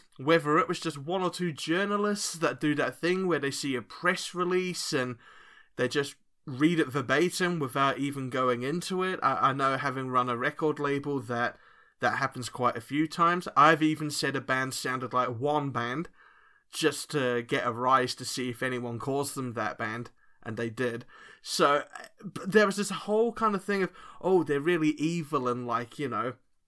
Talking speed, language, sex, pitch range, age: 195 wpm, English, male, 130-180 Hz, 20-39